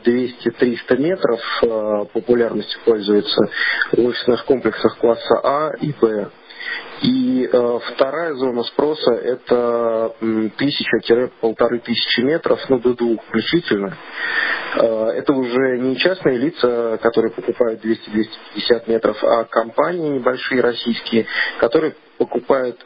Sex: male